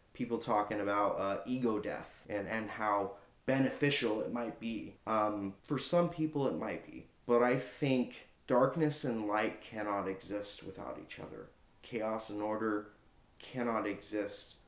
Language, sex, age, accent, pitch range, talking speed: English, male, 20-39, American, 100-120 Hz, 145 wpm